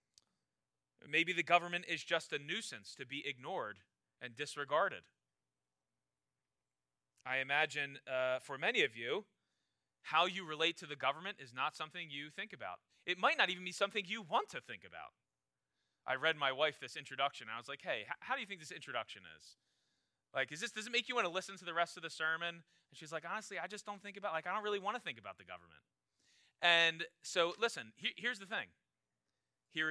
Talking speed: 200 wpm